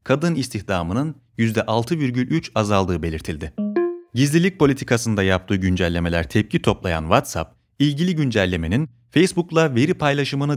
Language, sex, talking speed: Turkish, male, 95 wpm